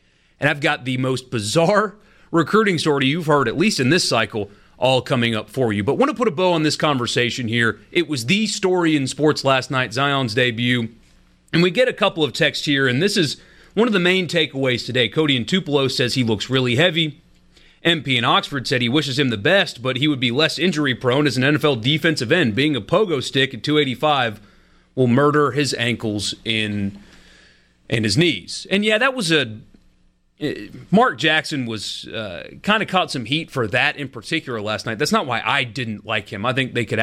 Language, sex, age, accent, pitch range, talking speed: English, male, 30-49, American, 115-155 Hz, 210 wpm